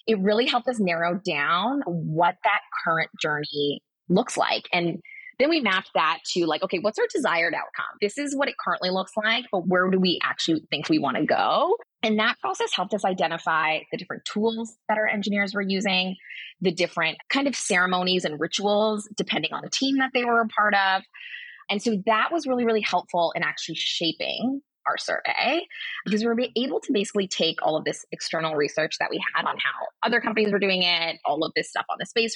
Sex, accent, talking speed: female, American, 210 wpm